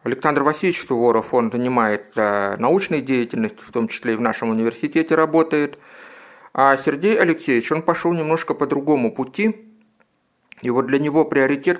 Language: Russian